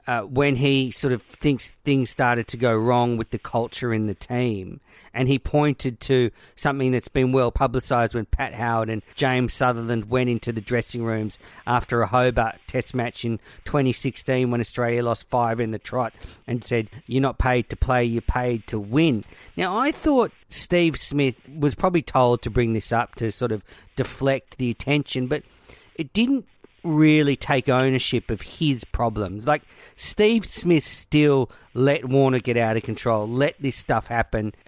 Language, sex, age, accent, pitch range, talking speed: English, male, 50-69, Australian, 115-140 Hz, 180 wpm